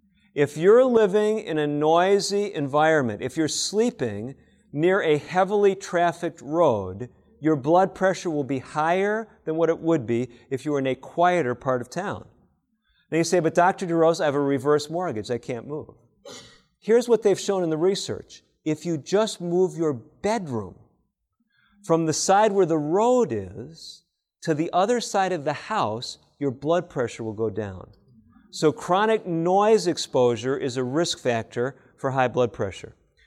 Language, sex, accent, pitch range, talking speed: English, male, American, 130-175 Hz, 170 wpm